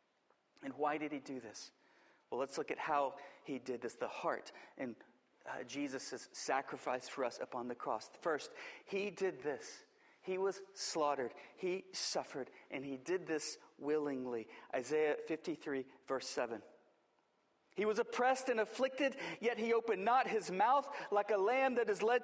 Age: 40-59